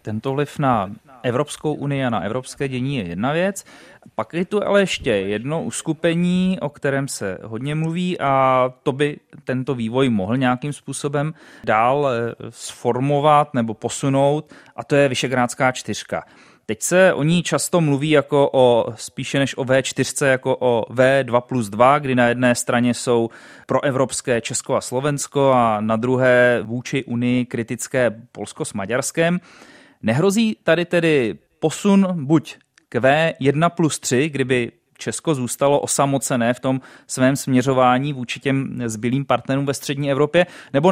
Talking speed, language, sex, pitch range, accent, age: 145 wpm, Czech, male, 125-145 Hz, native, 30-49